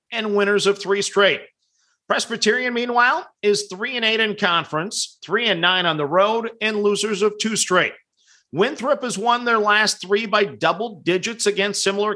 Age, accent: 50-69, American